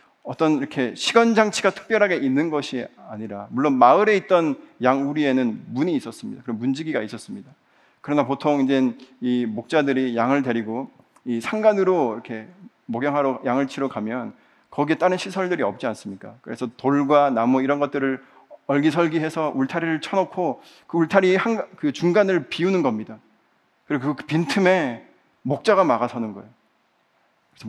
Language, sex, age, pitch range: Korean, male, 40-59, 130-185 Hz